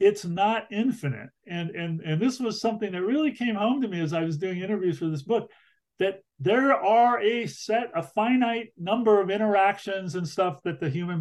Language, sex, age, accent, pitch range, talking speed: English, male, 40-59, American, 145-200 Hz, 205 wpm